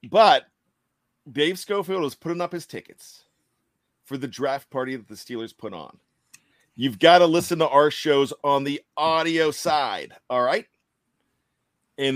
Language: English